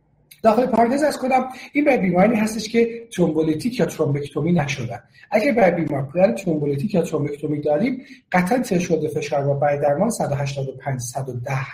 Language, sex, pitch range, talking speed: Persian, male, 150-195 Hz, 140 wpm